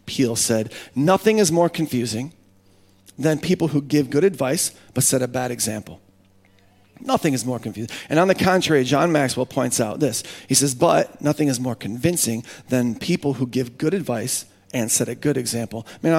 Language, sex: English, male